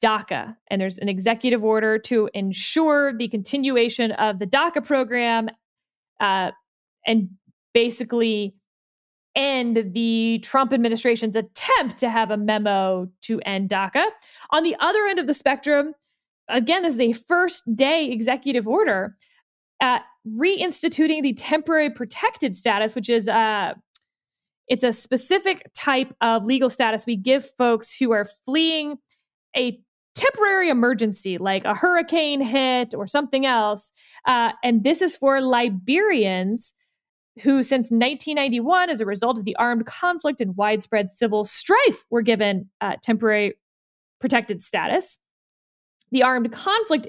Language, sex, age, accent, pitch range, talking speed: English, female, 20-39, American, 220-290 Hz, 135 wpm